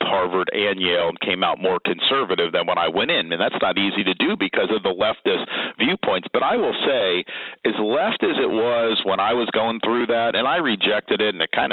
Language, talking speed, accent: English, 235 wpm, American